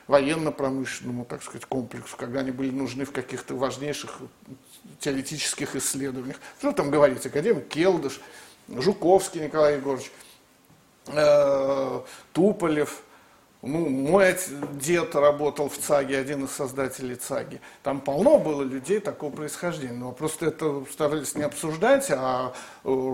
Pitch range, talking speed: 135-185 Hz, 125 wpm